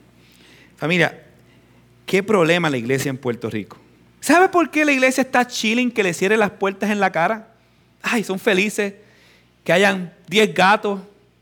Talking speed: 160 wpm